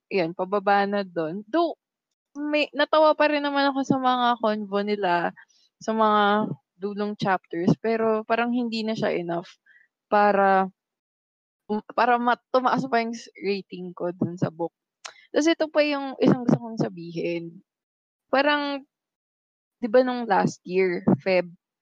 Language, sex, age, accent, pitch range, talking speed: English, female, 20-39, Filipino, 190-240 Hz, 135 wpm